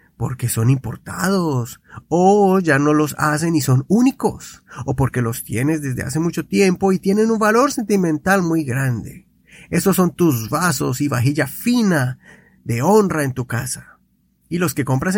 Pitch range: 135-195 Hz